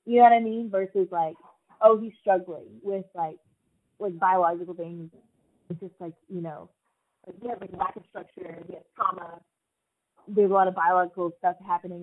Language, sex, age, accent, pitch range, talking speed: English, female, 20-39, American, 175-220 Hz, 190 wpm